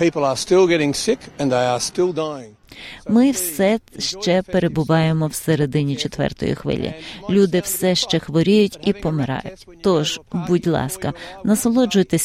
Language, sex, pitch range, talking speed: Ukrainian, female, 150-200 Hz, 90 wpm